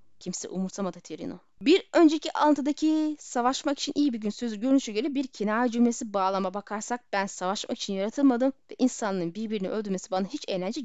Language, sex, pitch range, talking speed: Turkish, female, 195-280 Hz, 165 wpm